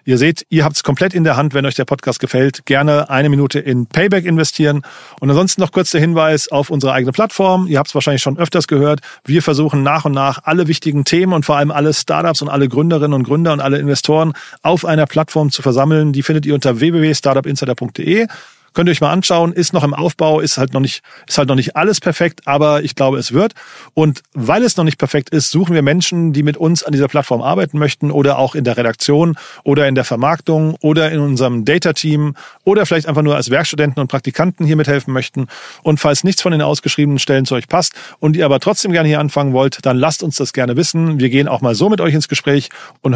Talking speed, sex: 230 wpm, male